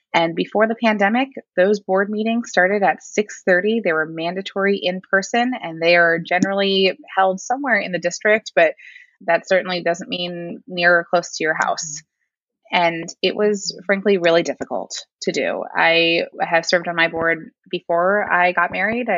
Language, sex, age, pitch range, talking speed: English, female, 20-39, 165-195 Hz, 165 wpm